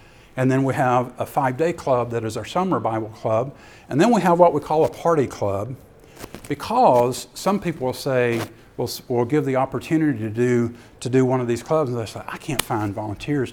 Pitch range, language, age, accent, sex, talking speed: 120-140 Hz, English, 50-69, American, male, 215 wpm